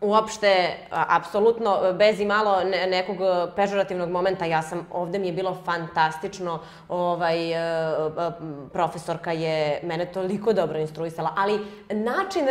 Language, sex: English, female